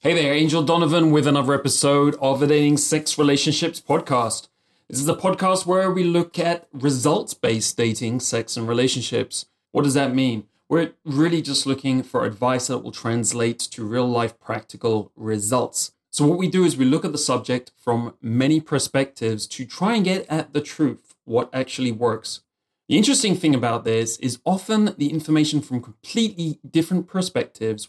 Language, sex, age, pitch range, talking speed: English, male, 30-49, 120-155 Hz, 170 wpm